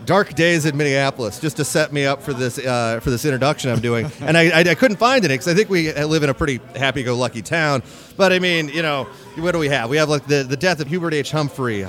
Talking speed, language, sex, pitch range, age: 265 wpm, English, male, 135-170 Hz, 30-49